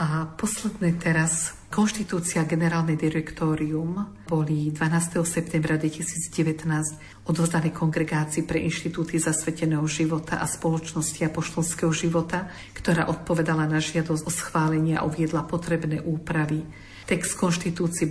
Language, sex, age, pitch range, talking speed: Slovak, female, 50-69, 155-170 Hz, 105 wpm